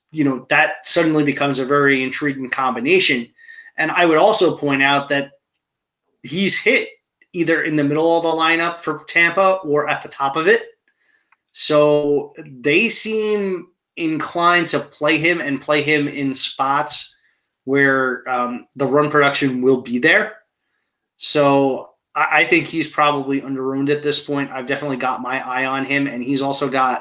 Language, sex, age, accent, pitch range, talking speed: English, male, 20-39, American, 135-155 Hz, 160 wpm